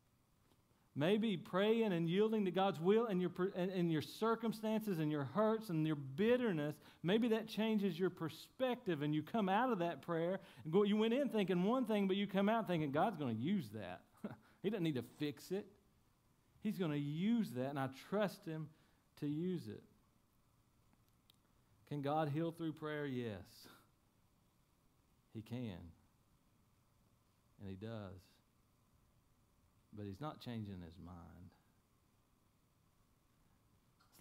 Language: English